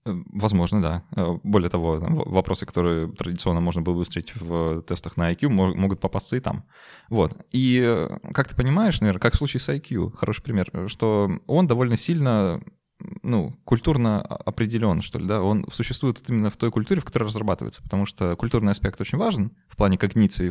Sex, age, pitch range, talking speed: male, 20-39, 95-125 Hz, 180 wpm